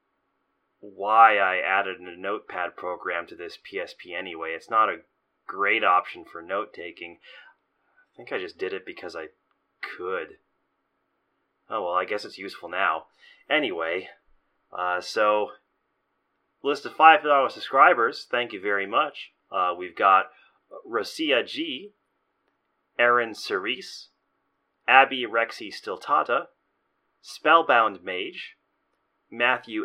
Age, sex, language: 30-49, male, English